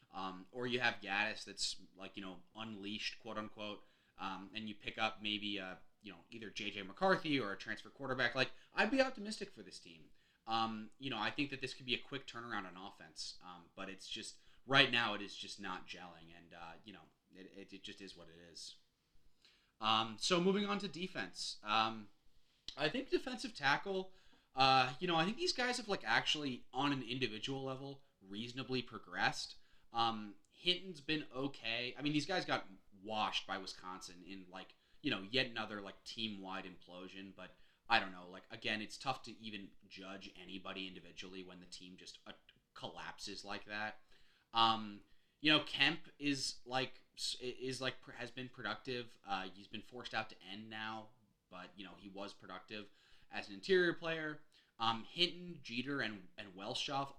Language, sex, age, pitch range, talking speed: English, male, 30-49, 95-130 Hz, 185 wpm